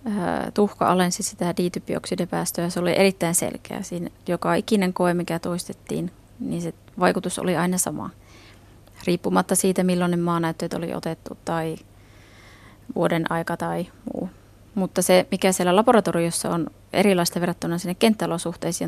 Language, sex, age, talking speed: Finnish, female, 20-39, 130 wpm